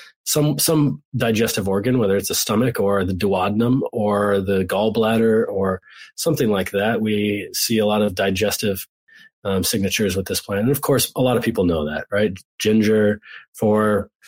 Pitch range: 105-145 Hz